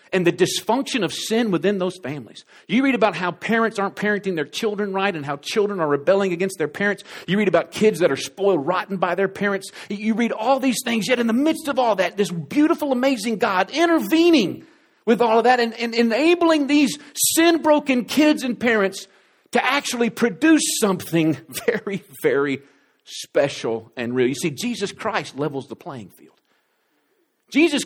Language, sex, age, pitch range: English, male, 50-69, 160-240 Hz